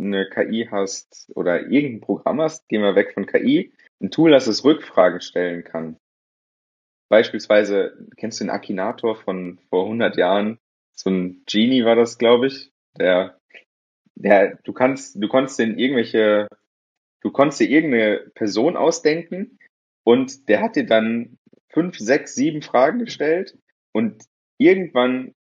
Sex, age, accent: male, 30-49, German